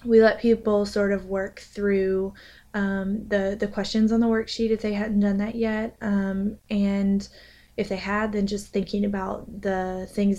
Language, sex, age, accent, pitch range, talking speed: English, female, 20-39, American, 185-205 Hz, 180 wpm